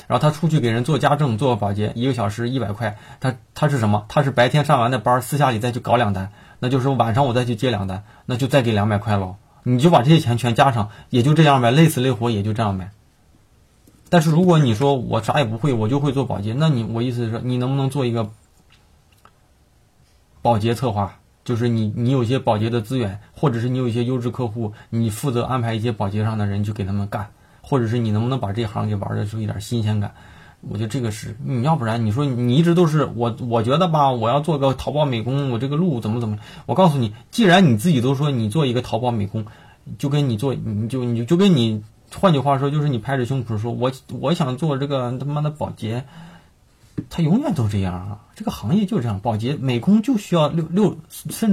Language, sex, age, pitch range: Chinese, male, 20-39, 115-145 Hz